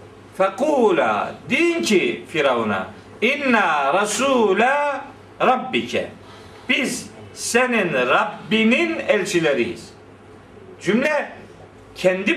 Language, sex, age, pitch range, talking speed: Turkish, male, 50-69, 195-260 Hz, 65 wpm